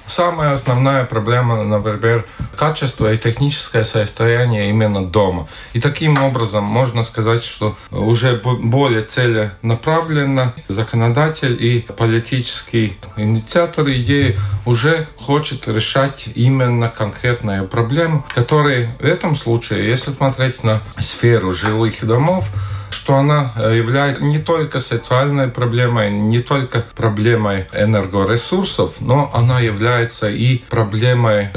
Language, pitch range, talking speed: Russian, 110-130 Hz, 105 wpm